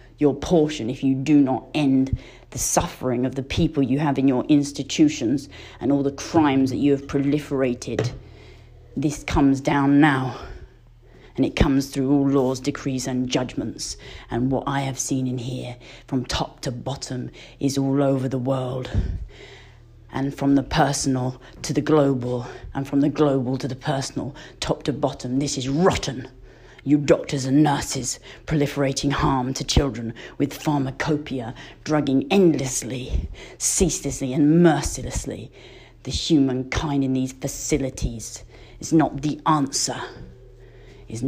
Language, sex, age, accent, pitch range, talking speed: English, female, 30-49, British, 125-145 Hz, 145 wpm